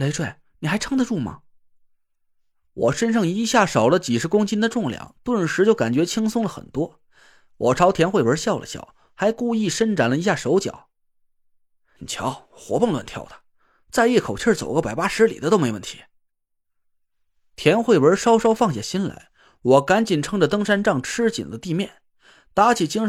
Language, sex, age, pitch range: Chinese, male, 30-49, 150-220 Hz